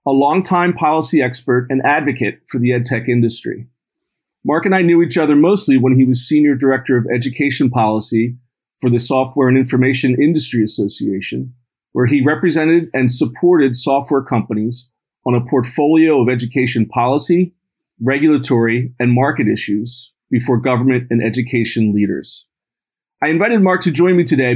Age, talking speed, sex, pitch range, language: 40-59, 150 wpm, male, 120-150 Hz, English